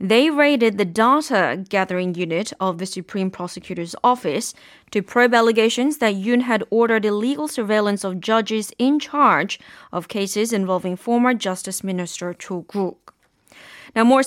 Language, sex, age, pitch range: Korean, female, 20-39, 195-250 Hz